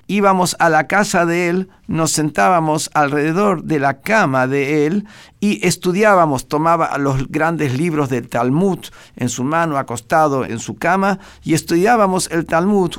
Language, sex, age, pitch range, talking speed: Spanish, male, 50-69, 125-170 Hz, 155 wpm